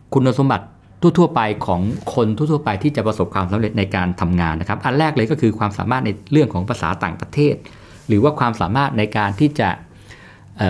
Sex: male